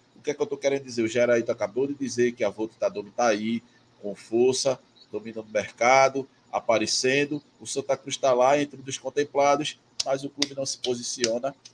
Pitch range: 120-140 Hz